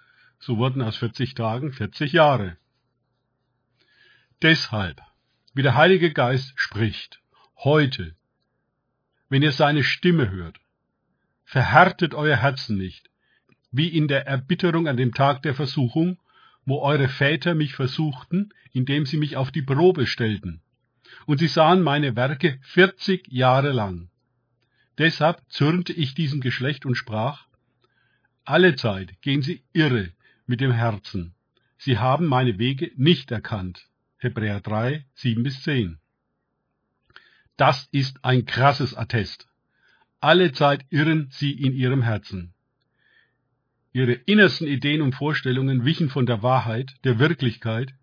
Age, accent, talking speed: 50-69, German, 125 wpm